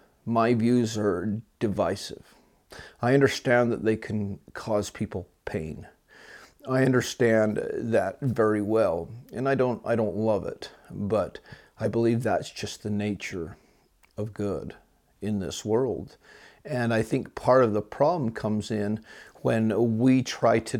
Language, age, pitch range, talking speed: English, 40-59, 105-120 Hz, 140 wpm